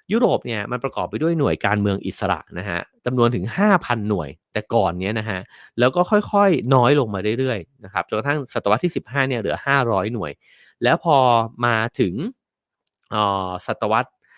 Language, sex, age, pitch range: English, male, 30-49, 100-135 Hz